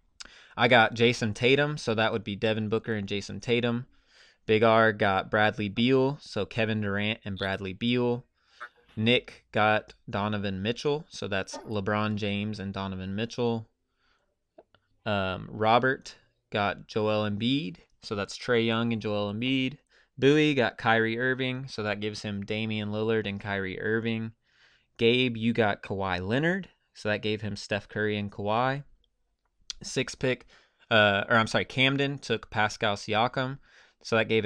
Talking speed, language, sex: 150 wpm, English, male